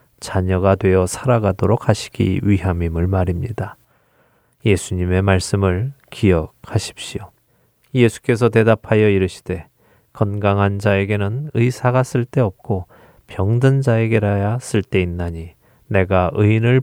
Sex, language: male, Korean